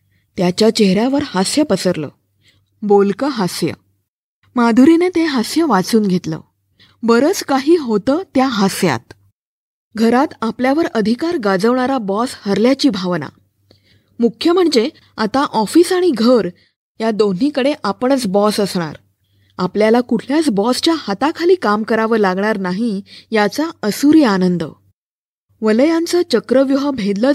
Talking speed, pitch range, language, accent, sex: 105 wpm, 185-270 Hz, Marathi, native, female